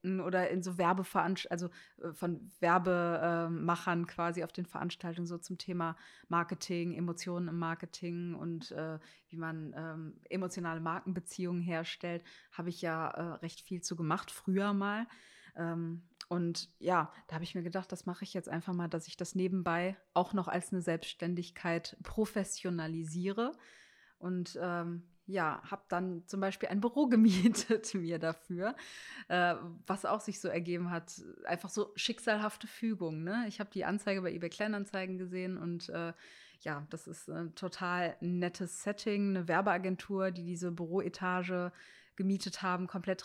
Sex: female